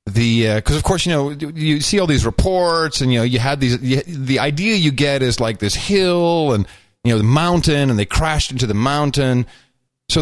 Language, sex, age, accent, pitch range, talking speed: English, male, 40-59, American, 105-145 Hz, 230 wpm